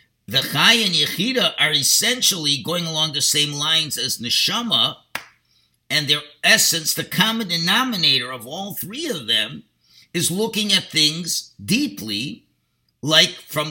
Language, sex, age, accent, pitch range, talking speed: English, male, 50-69, American, 125-170 Hz, 135 wpm